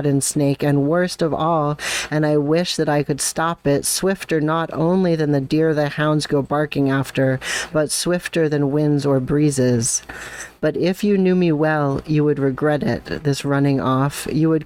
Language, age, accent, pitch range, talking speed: English, 40-59, American, 135-155 Hz, 190 wpm